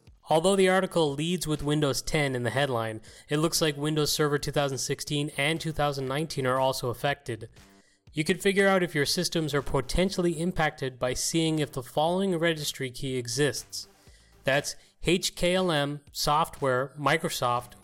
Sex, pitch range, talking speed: male, 130-160 Hz, 145 wpm